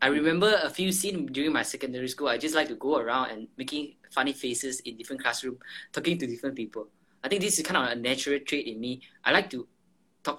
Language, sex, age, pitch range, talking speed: English, male, 10-29, 125-180 Hz, 235 wpm